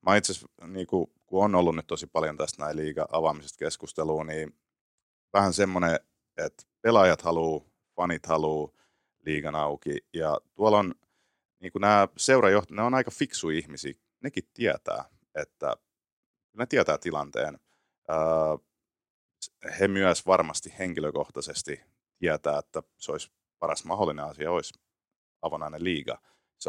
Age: 30-49